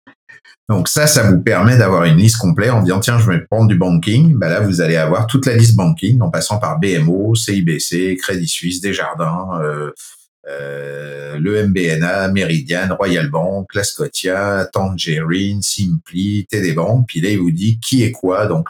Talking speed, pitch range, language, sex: 175 wpm, 90-120 Hz, French, male